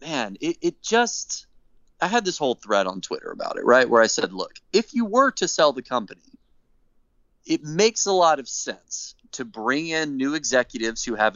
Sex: male